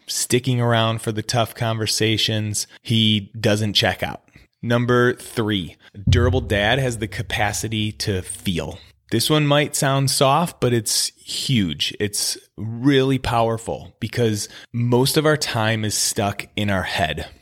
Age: 20-39